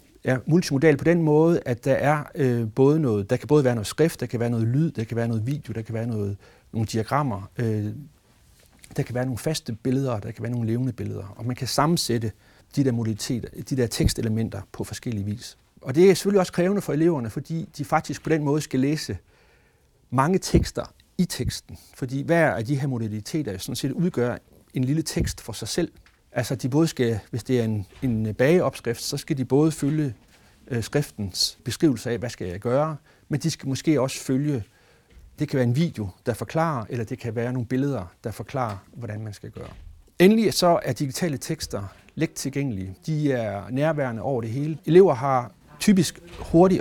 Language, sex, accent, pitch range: Danish, male, native, 115-150 Hz